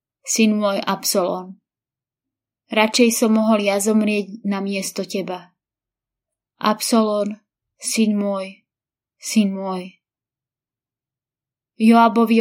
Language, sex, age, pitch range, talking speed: Slovak, female, 20-39, 175-220 Hz, 80 wpm